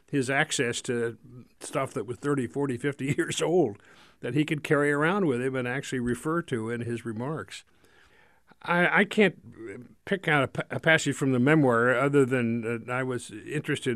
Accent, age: American, 50-69